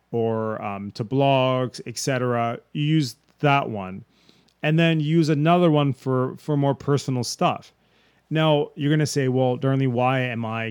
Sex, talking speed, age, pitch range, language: male, 150 wpm, 30-49, 115-140 Hz, English